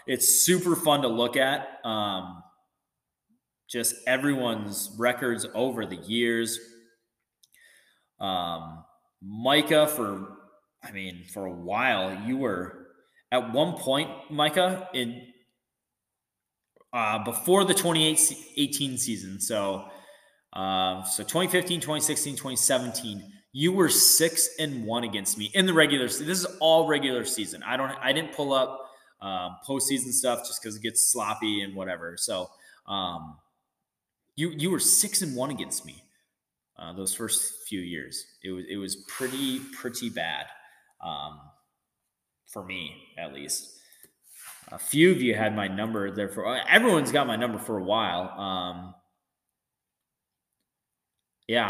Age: 20-39